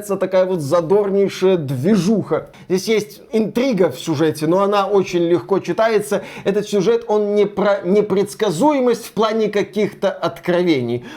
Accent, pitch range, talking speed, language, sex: native, 170-205 Hz, 130 wpm, Russian, male